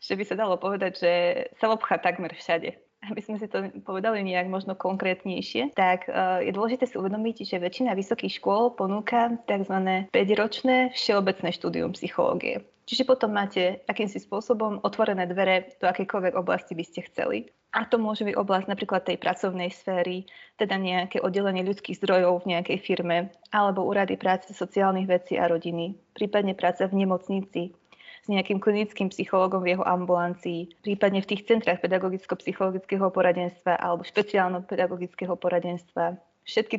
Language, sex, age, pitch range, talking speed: Slovak, female, 20-39, 180-210 Hz, 150 wpm